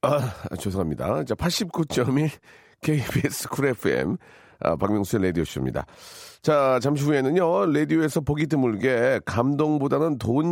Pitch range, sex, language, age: 120-155 Hz, male, Korean, 40-59